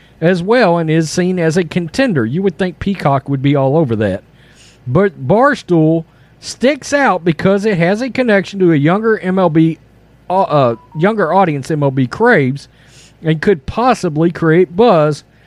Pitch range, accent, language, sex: 140-195 Hz, American, English, male